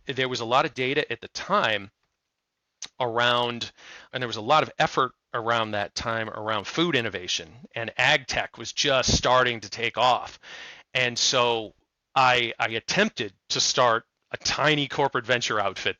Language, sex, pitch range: English, male, 115-135 Hz